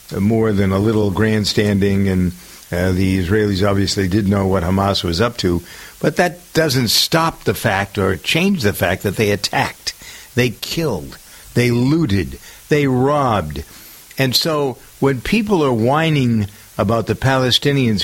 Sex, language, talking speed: male, English, 150 wpm